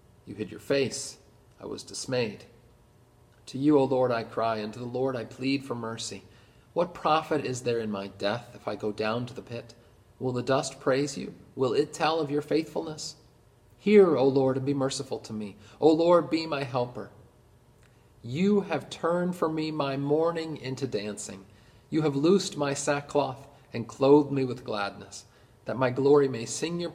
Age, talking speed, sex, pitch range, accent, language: 40-59, 185 wpm, male, 110-135 Hz, American, English